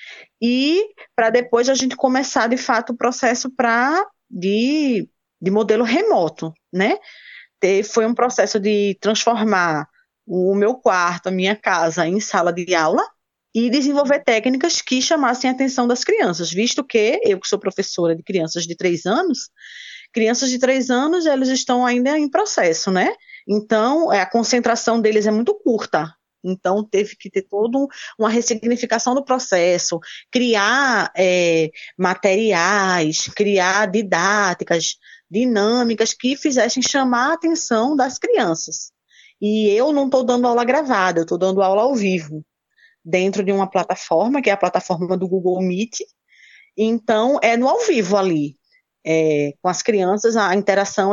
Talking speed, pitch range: 145 wpm, 190-260 Hz